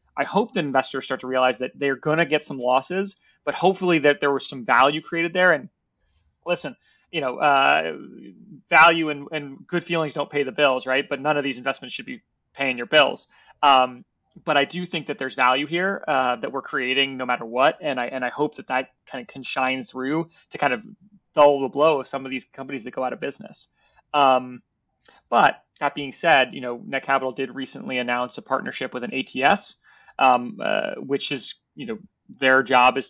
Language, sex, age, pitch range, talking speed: English, male, 30-49, 130-155 Hz, 210 wpm